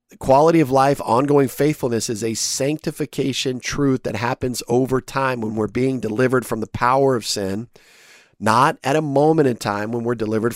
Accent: American